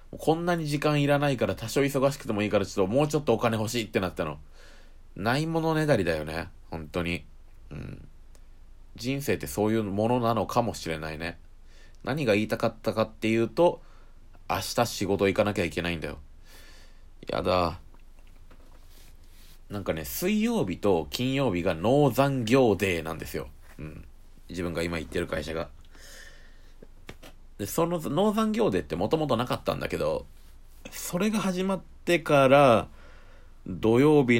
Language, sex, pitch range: Japanese, male, 85-125 Hz